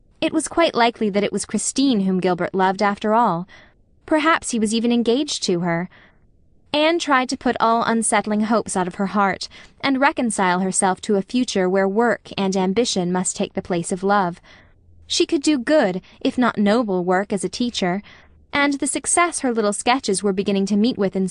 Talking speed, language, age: 195 wpm, English, 10-29